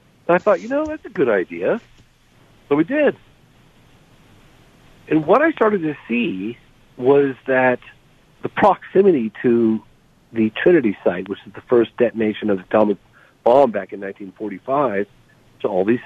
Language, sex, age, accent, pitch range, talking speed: English, male, 50-69, American, 105-140 Hz, 150 wpm